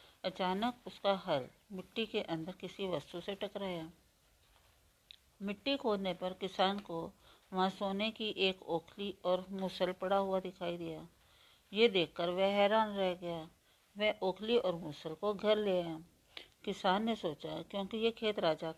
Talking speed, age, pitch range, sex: 150 wpm, 50-69, 170-205 Hz, female